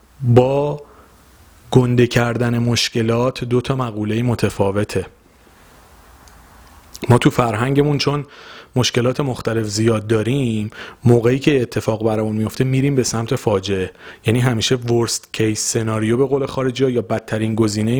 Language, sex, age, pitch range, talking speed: Persian, male, 30-49, 105-130 Hz, 120 wpm